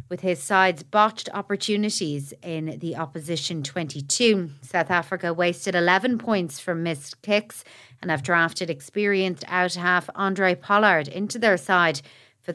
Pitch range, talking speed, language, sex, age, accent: 160-195 Hz, 135 wpm, English, female, 30-49, Irish